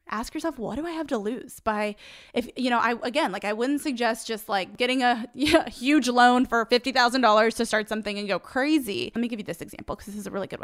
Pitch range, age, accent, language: 210-265 Hz, 20-39, American, English